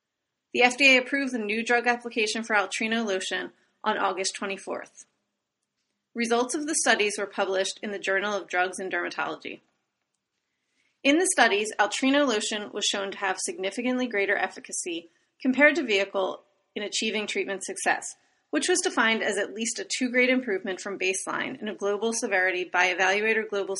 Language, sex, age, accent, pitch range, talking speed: English, female, 30-49, American, 195-245 Hz, 160 wpm